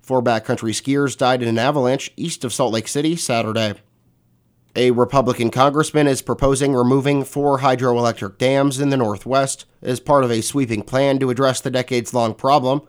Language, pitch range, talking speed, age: English, 120-140 Hz, 170 wpm, 30-49